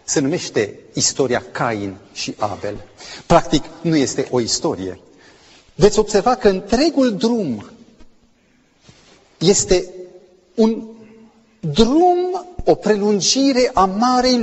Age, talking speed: 40-59, 95 wpm